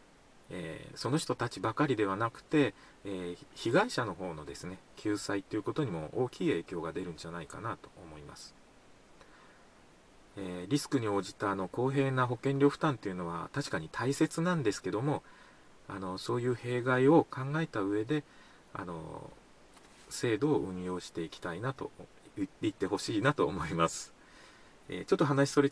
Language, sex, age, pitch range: Japanese, male, 40-59, 100-145 Hz